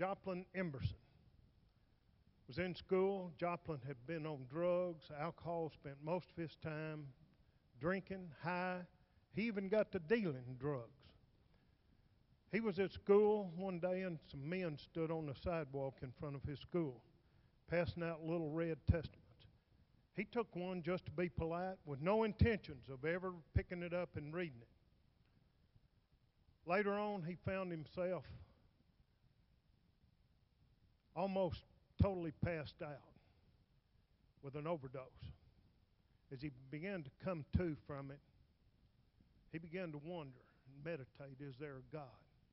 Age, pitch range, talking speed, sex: 50-69, 135-180 Hz, 135 wpm, male